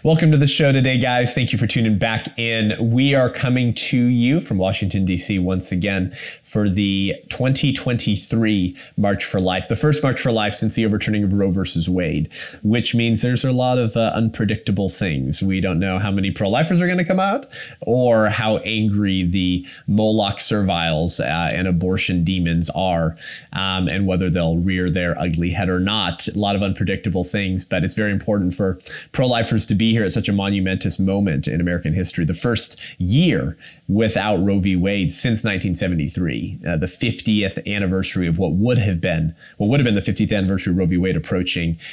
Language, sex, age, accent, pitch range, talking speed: English, male, 20-39, American, 95-115 Hz, 190 wpm